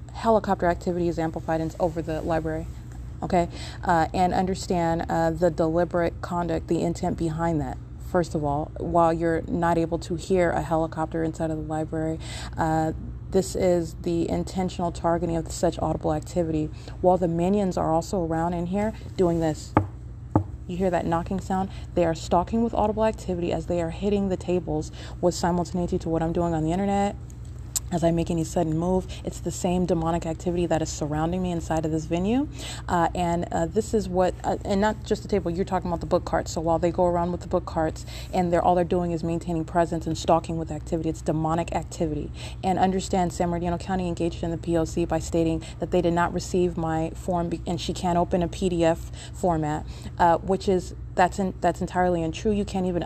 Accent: American